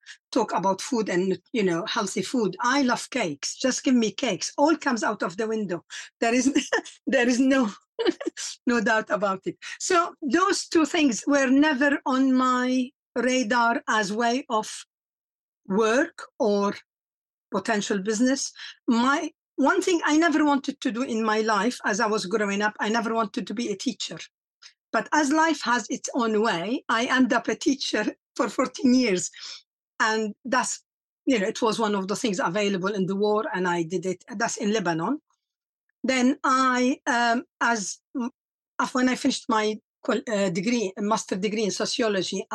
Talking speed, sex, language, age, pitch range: 165 wpm, female, English, 50-69, 205-265 Hz